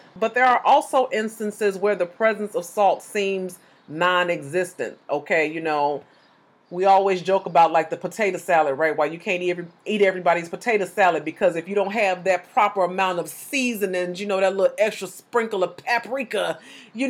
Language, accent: English, American